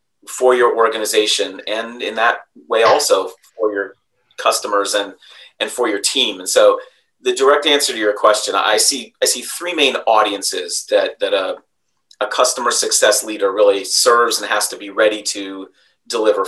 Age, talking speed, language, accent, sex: 30-49, 170 wpm, English, American, male